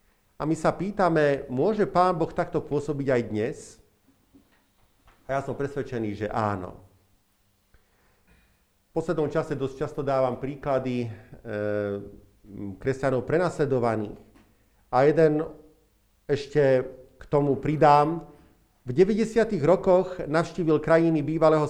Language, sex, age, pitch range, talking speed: Slovak, male, 50-69, 120-160 Hz, 110 wpm